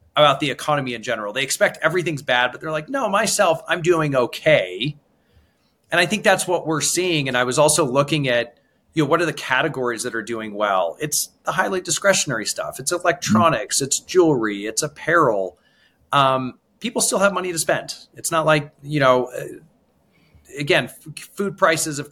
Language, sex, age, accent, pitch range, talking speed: English, male, 30-49, American, 125-165 Hz, 185 wpm